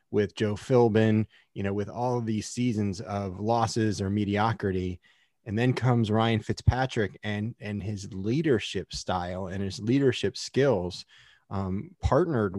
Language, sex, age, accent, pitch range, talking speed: English, male, 30-49, American, 100-120 Hz, 145 wpm